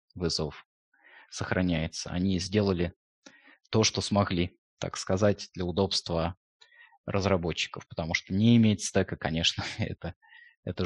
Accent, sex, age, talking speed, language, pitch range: native, male, 20-39, 110 wpm, Russian, 85-110 Hz